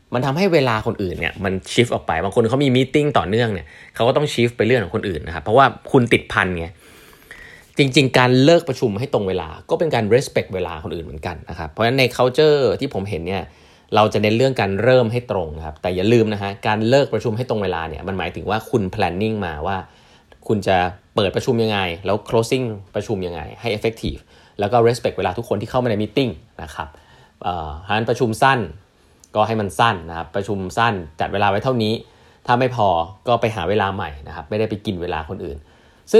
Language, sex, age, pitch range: Thai, male, 20-39, 90-120 Hz